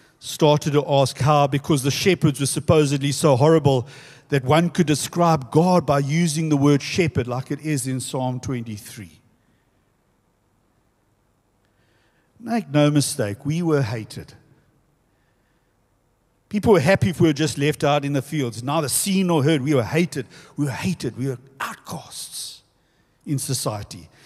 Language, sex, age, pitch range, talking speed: English, male, 60-79, 125-160 Hz, 150 wpm